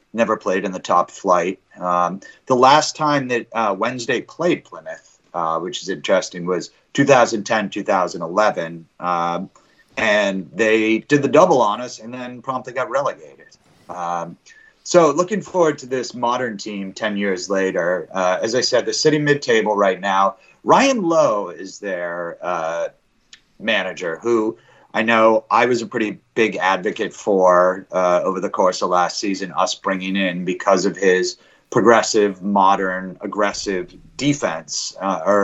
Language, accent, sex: English, American, male